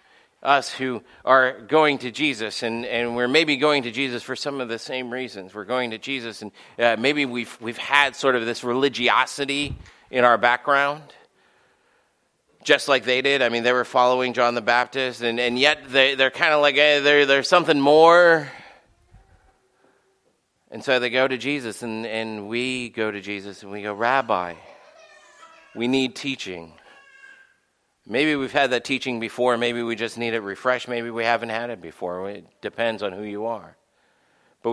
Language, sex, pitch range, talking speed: English, male, 110-135 Hz, 180 wpm